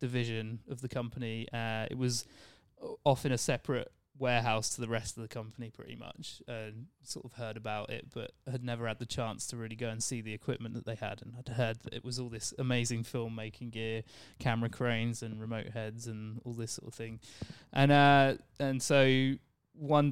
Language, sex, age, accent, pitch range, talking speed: English, male, 20-39, British, 115-130 Hz, 205 wpm